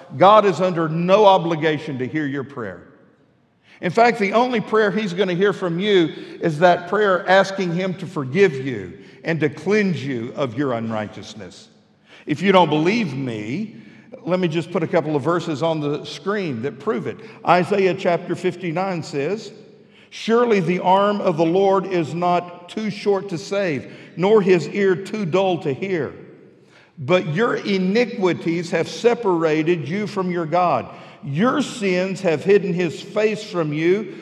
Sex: male